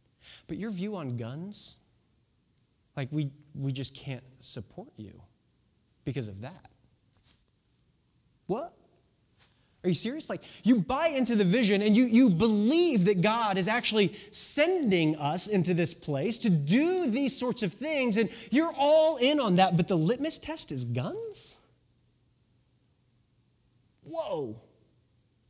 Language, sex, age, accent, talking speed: English, male, 30-49, American, 135 wpm